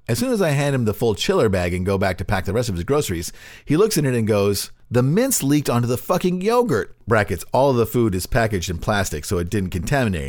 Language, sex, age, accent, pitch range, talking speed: English, male, 40-59, American, 100-135 Hz, 270 wpm